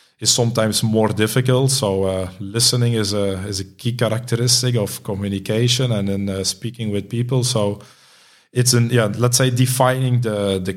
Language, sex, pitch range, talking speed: English, male, 100-120 Hz, 165 wpm